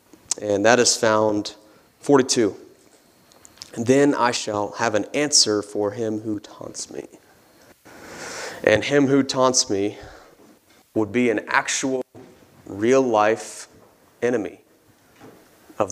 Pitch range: 105-130 Hz